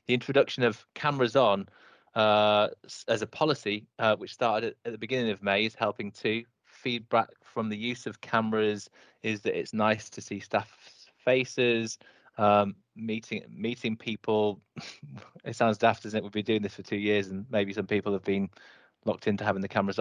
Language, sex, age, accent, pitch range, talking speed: English, male, 20-39, British, 100-115 Hz, 185 wpm